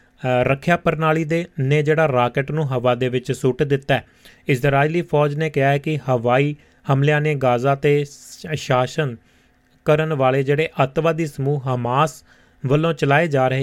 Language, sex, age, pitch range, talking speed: Punjabi, male, 30-49, 130-150 Hz, 155 wpm